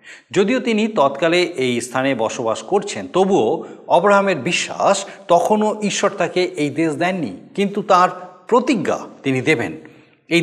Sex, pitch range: male, 140-200 Hz